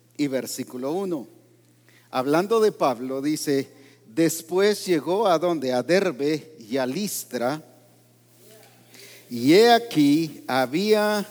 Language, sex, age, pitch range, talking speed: English, male, 50-69, 120-195 Hz, 105 wpm